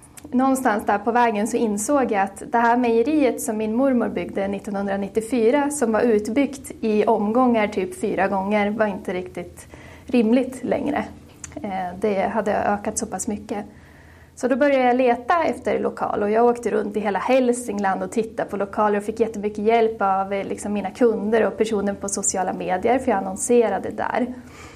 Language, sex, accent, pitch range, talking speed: English, female, Swedish, 210-255 Hz, 165 wpm